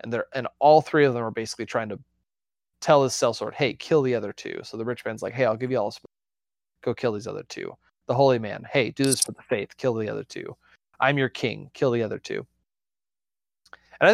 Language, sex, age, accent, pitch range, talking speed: English, male, 20-39, American, 120-165 Hz, 245 wpm